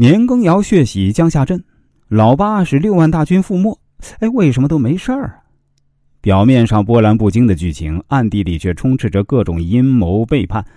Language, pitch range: Chinese, 95-150 Hz